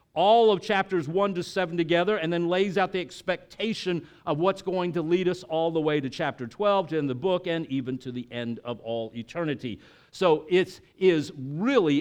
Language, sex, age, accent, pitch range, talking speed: English, male, 50-69, American, 140-180 Hz, 205 wpm